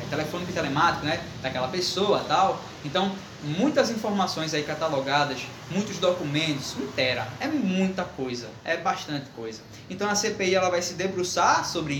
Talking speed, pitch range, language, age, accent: 145 wpm, 140-180 Hz, Portuguese, 20-39, Brazilian